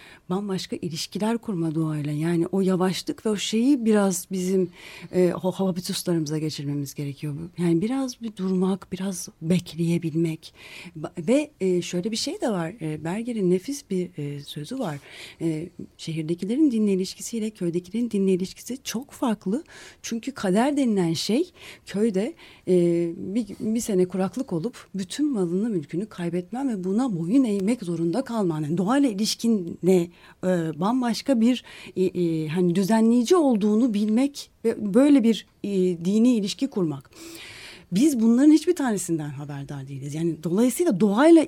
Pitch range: 175-235 Hz